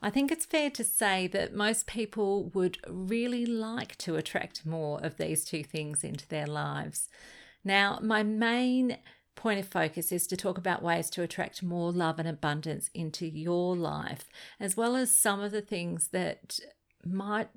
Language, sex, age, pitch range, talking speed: English, female, 40-59, 155-200 Hz, 175 wpm